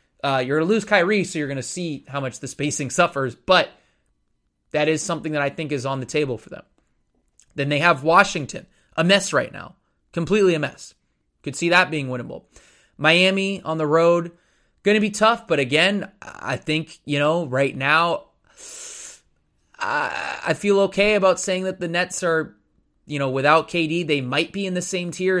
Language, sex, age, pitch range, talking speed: English, male, 20-39, 140-175 Hz, 190 wpm